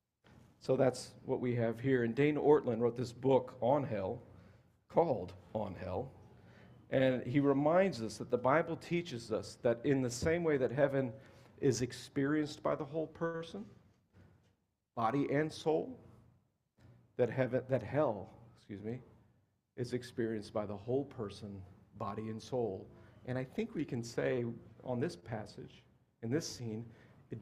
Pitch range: 115-145 Hz